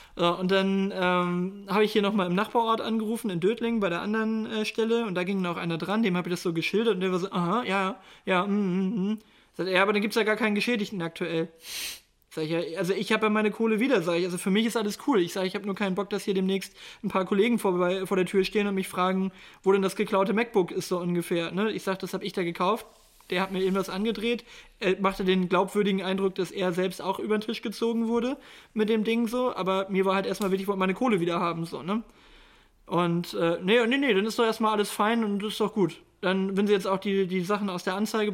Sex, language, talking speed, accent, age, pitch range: male, German, 265 wpm, German, 20-39, 185-215 Hz